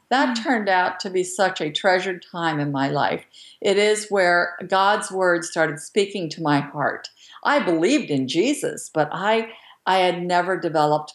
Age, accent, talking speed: 50-69, American, 170 wpm